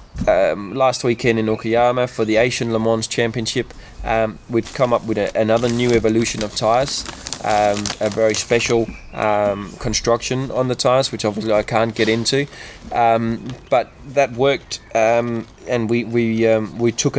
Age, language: 20-39, English